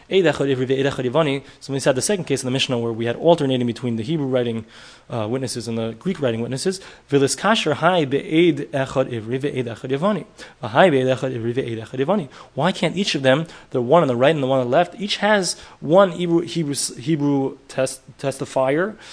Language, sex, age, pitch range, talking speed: English, male, 20-39, 125-170 Hz, 150 wpm